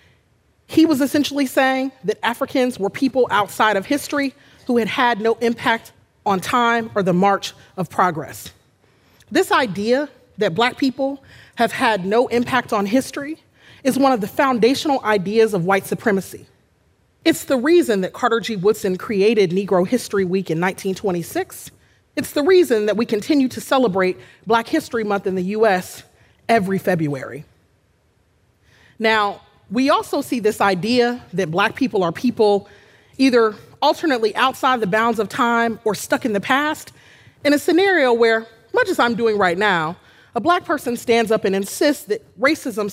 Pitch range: 185-265 Hz